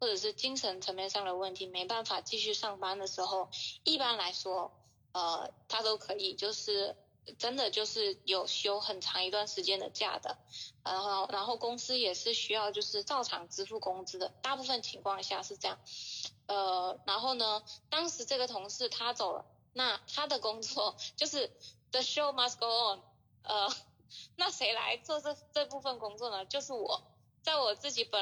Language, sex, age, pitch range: Chinese, female, 20-39, 195-260 Hz